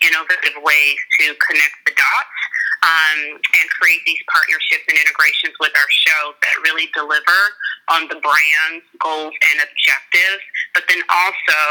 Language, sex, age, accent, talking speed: English, female, 30-49, American, 145 wpm